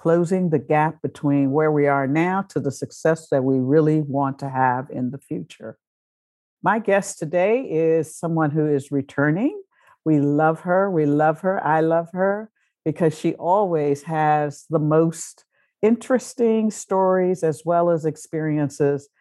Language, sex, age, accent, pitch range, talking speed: English, female, 60-79, American, 150-190 Hz, 155 wpm